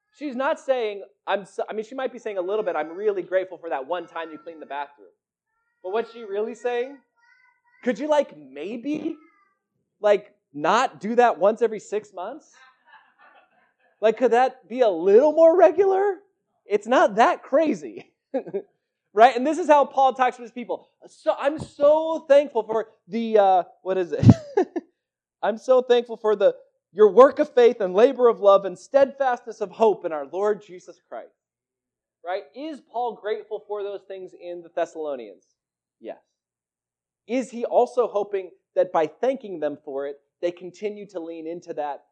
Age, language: 20-39, English